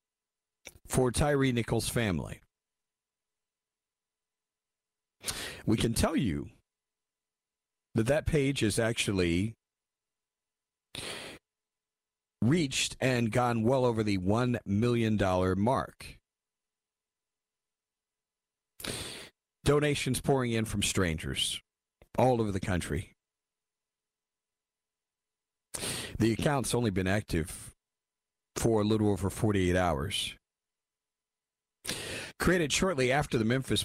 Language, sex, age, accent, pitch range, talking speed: English, male, 50-69, American, 75-120 Hz, 85 wpm